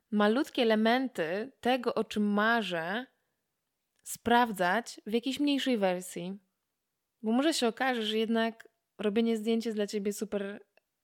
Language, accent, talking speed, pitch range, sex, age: Polish, native, 125 wpm, 210-250 Hz, female, 20-39